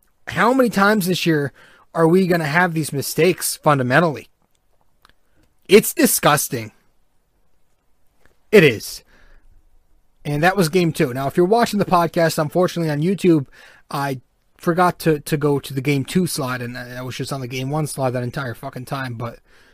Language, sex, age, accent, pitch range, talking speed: English, male, 30-49, American, 125-155 Hz, 165 wpm